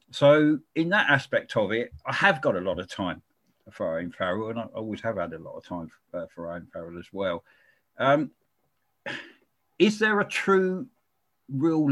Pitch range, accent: 130-175 Hz, British